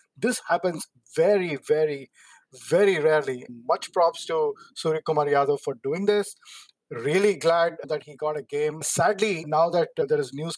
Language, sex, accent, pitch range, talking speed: English, male, Indian, 150-220 Hz, 165 wpm